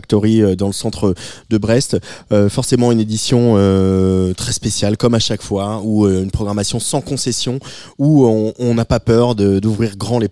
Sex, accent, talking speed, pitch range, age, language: male, French, 185 wpm, 100-120 Hz, 20-39, French